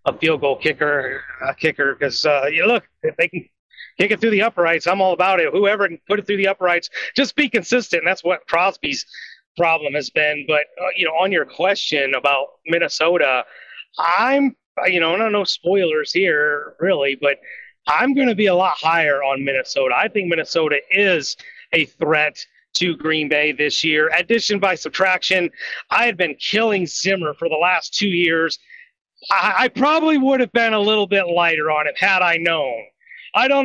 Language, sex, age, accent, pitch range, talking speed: English, male, 30-49, American, 165-235 Hz, 190 wpm